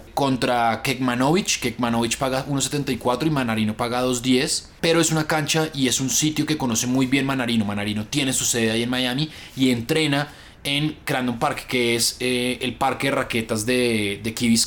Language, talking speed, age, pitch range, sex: Spanish, 180 wpm, 20-39, 120-145 Hz, male